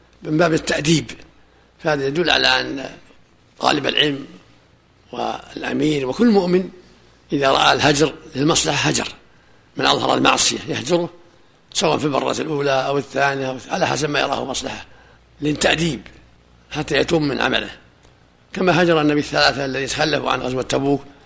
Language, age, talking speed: Arabic, 50-69, 130 wpm